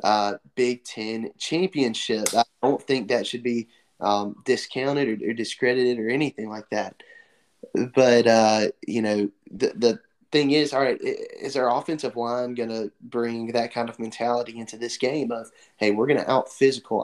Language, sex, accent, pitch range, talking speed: English, male, American, 110-125 Hz, 175 wpm